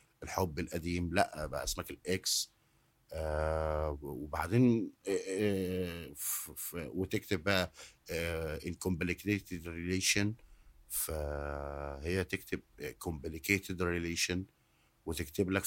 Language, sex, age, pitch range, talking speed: Arabic, male, 50-69, 85-100 Hz, 80 wpm